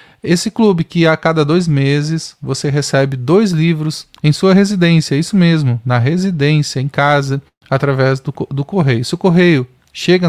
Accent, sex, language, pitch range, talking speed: Brazilian, male, Portuguese, 140-165 Hz, 165 wpm